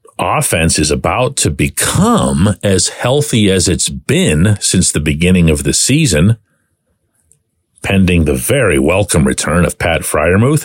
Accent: American